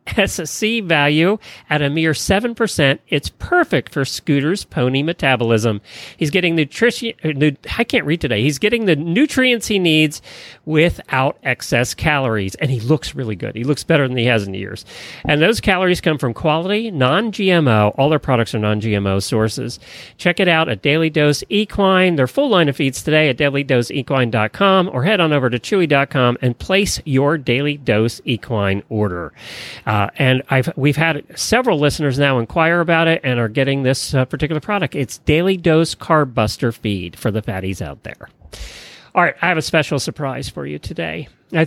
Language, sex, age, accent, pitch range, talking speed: English, male, 40-59, American, 120-165 Hz, 175 wpm